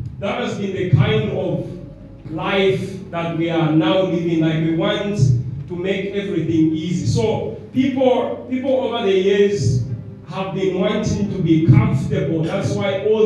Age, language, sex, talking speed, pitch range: 30-49, English, male, 155 wpm, 145-195 Hz